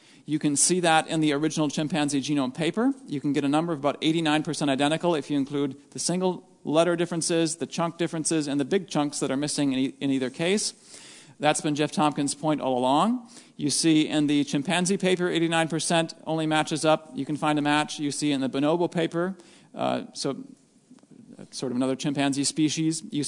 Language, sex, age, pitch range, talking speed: English, male, 40-59, 145-170 Hz, 195 wpm